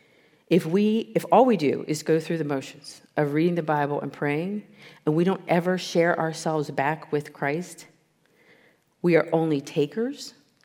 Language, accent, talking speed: English, American, 170 wpm